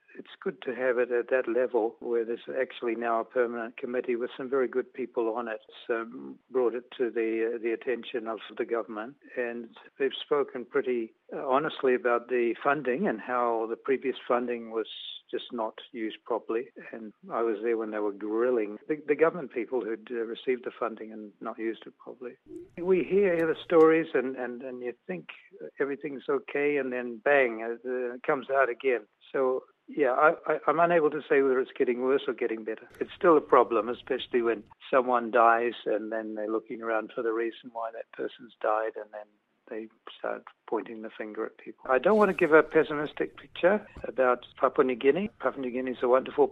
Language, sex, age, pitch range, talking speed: English, male, 60-79, 115-150 Hz, 200 wpm